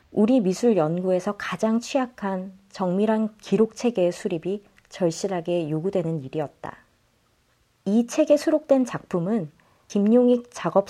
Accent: native